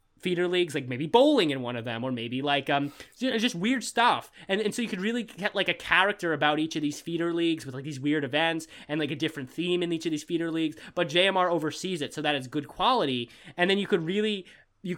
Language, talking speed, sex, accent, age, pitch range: English, 250 wpm, male, American, 20-39, 145-185 Hz